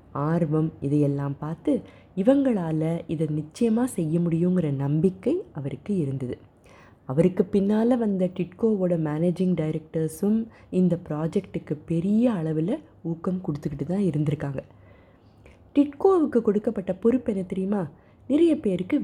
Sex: female